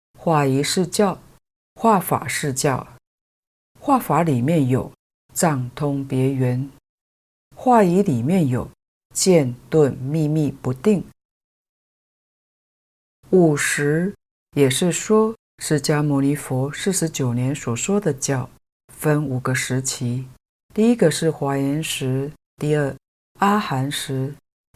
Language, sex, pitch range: Chinese, female, 130-175 Hz